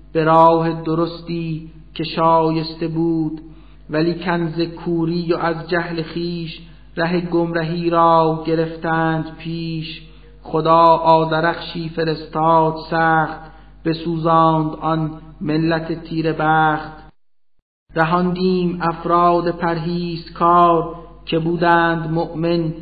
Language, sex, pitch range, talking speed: Persian, male, 160-170 Hz, 90 wpm